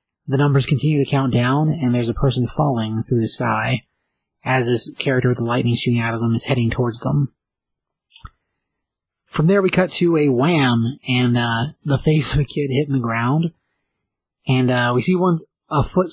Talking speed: 195 wpm